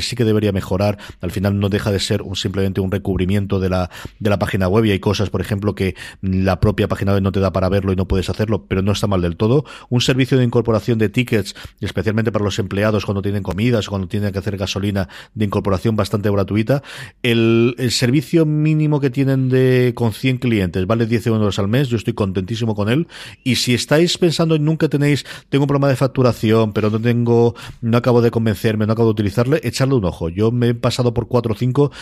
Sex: male